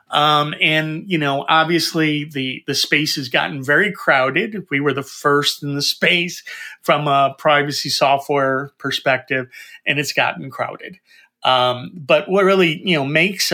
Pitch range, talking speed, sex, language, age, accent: 140-165 Hz, 155 wpm, male, English, 30-49, American